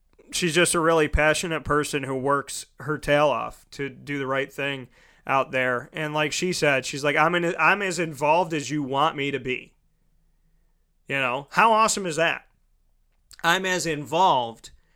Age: 30-49